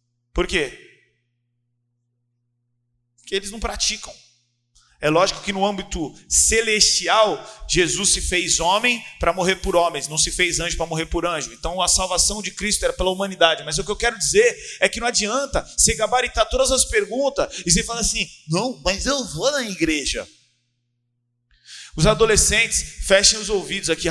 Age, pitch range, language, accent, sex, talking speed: 30-49, 155-230 Hz, Portuguese, Brazilian, male, 165 wpm